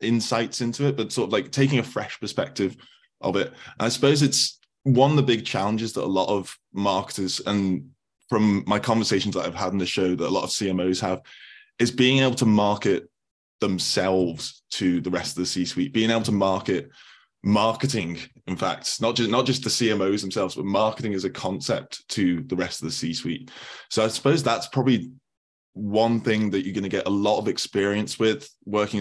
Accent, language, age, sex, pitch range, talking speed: British, English, 20-39, male, 90-115 Hz, 200 wpm